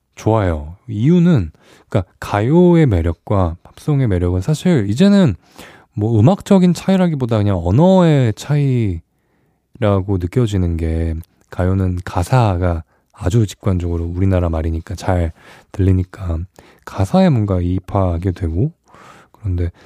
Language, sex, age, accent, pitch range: Korean, male, 20-39, native, 90-140 Hz